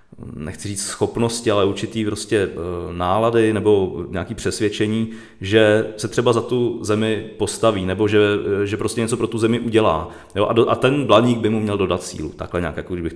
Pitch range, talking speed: 95-115 Hz, 185 wpm